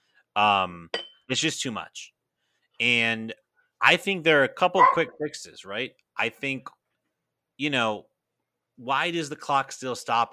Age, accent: 30-49, American